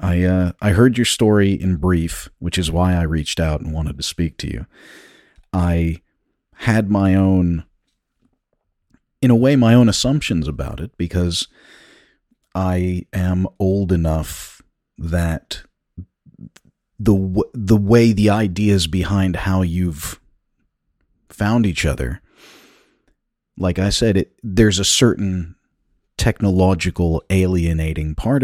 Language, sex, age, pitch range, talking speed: English, male, 40-59, 85-105 Hz, 125 wpm